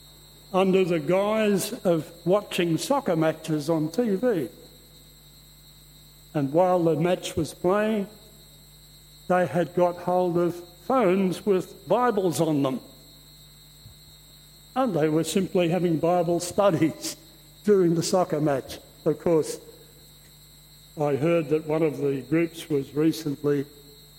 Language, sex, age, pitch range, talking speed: English, male, 60-79, 150-180 Hz, 115 wpm